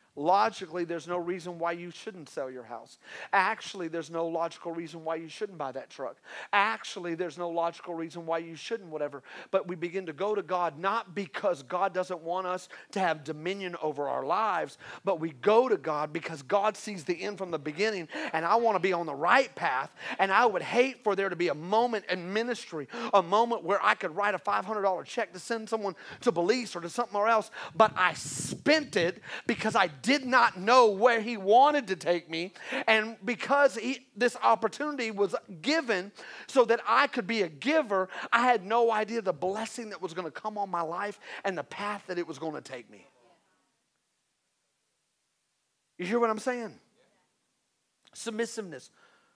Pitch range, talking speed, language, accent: 170-225 Hz, 195 wpm, English, American